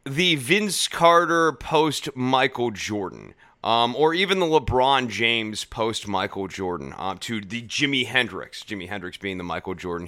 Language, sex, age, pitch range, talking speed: English, male, 30-49, 110-150 Hz, 155 wpm